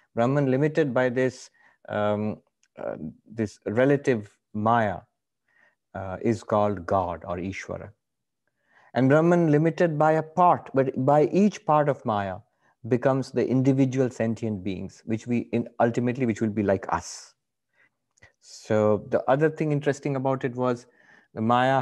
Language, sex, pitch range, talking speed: English, male, 110-145 Hz, 140 wpm